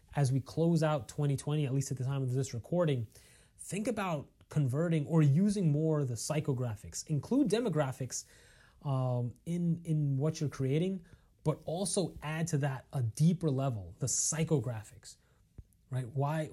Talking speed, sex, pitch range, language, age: 155 wpm, male, 125-160 Hz, English, 30-49